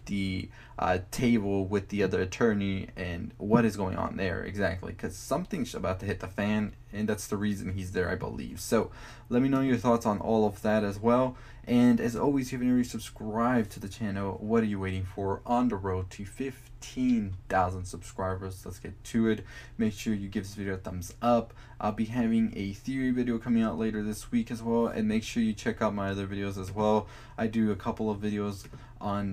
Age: 20-39